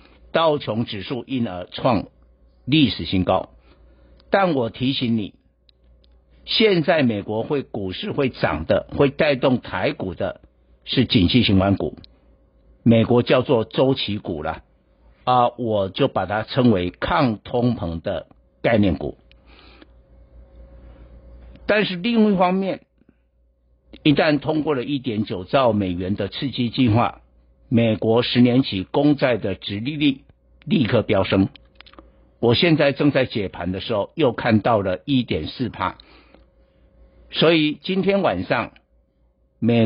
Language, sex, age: Chinese, male, 60-79